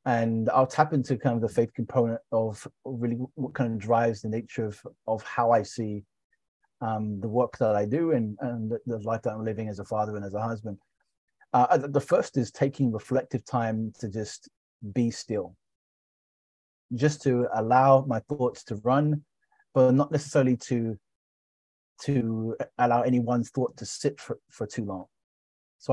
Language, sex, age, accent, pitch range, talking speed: English, male, 30-49, British, 110-130 Hz, 175 wpm